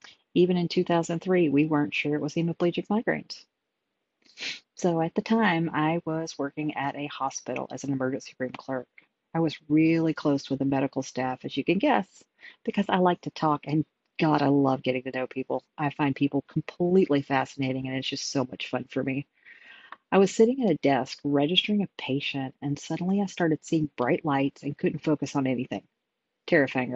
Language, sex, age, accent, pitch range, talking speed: English, female, 40-59, American, 135-170 Hz, 190 wpm